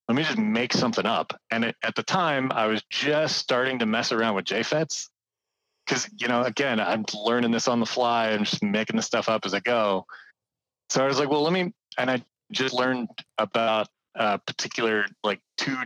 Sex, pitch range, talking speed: male, 110-135 Hz, 210 wpm